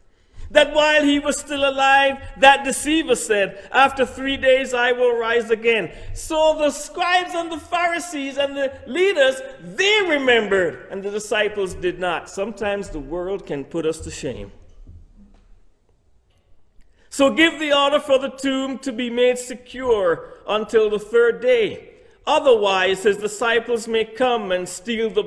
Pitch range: 185-280 Hz